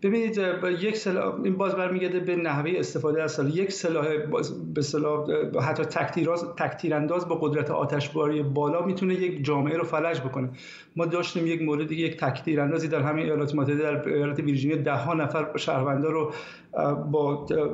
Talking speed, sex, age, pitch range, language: 155 wpm, male, 50-69, 150-175 Hz, Persian